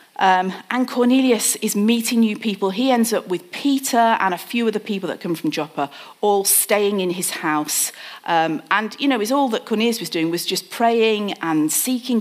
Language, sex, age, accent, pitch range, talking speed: English, female, 40-59, British, 170-230 Hz, 205 wpm